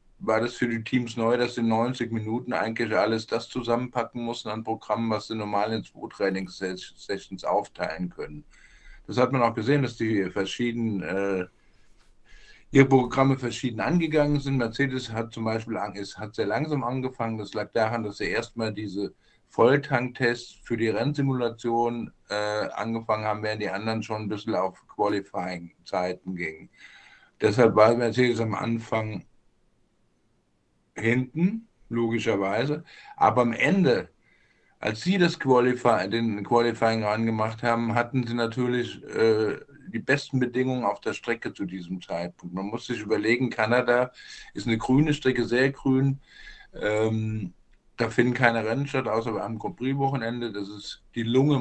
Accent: German